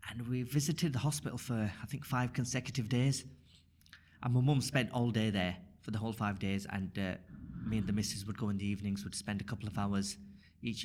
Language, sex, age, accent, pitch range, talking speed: English, male, 30-49, British, 100-125 Hz, 225 wpm